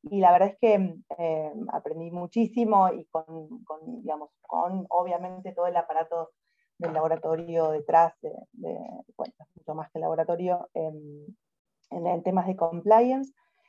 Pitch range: 165-210 Hz